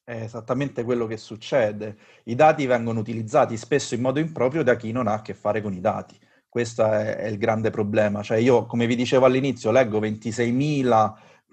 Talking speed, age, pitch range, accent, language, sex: 195 wpm, 30-49, 110-135 Hz, native, Italian, male